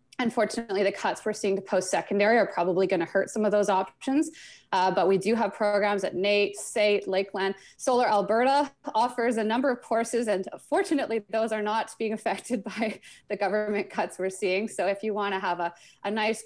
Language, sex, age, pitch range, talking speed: English, female, 20-39, 180-220 Hz, 200 wpm